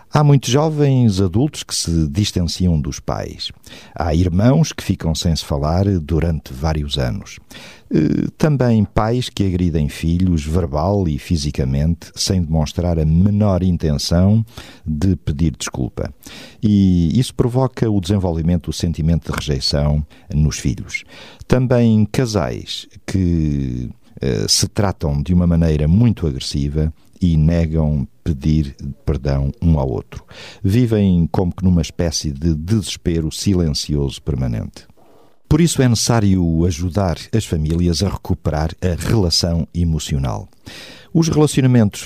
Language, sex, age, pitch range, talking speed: Portuguese, male, 50-69, 80-105 Hz, 125 wpm